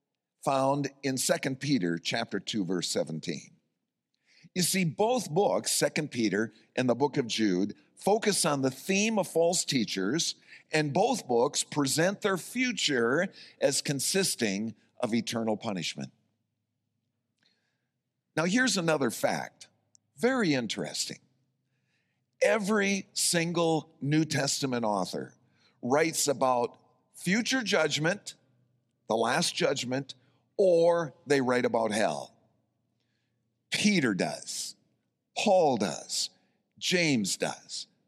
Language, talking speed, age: English, 105 wpm, 50-69